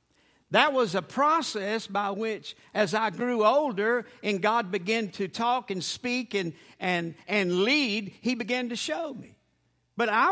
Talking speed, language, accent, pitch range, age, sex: 165 wpm, English, American, 180-255 Hz, 50-69, male